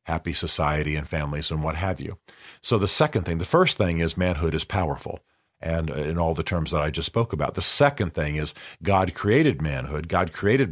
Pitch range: 80-105 Hz